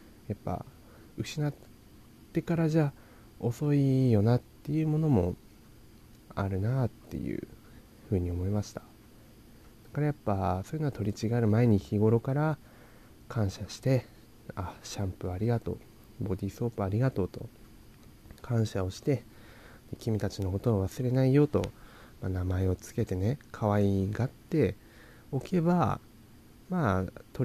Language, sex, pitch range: Japanese, male, 95-120 Hz